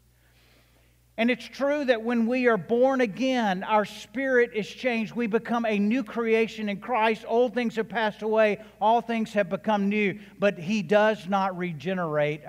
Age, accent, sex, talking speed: 50-69, American, male, 170 wpm